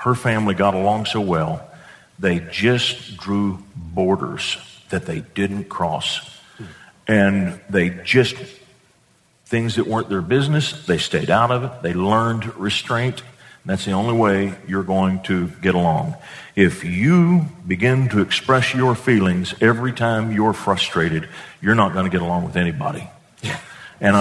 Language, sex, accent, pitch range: English, male, American, 100-140 Hz